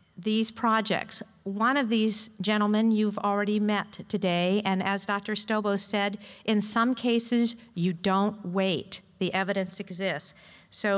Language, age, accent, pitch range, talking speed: English, 50-69, American, 185-215 Hz, 135 wpm